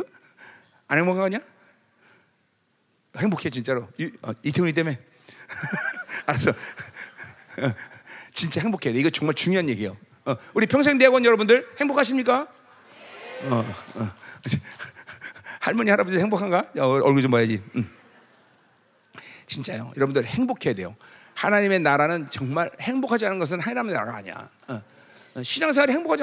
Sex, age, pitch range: male, 40-59, 165-265 Hz